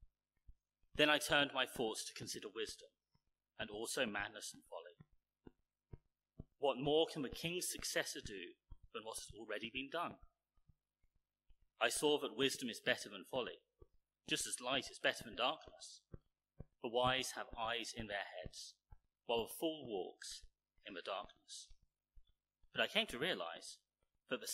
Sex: male